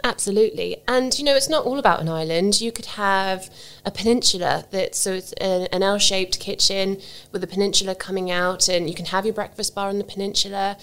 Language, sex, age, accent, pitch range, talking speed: English, female, 20-39, British, 180-205 Hz, 190 wpm